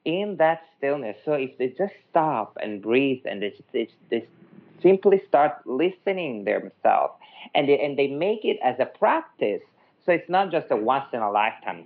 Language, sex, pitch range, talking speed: English, male, 120-180 Hz, 170 wpm